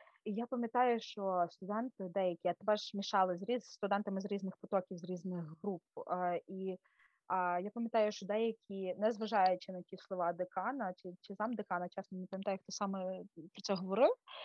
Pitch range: 185-245 Hz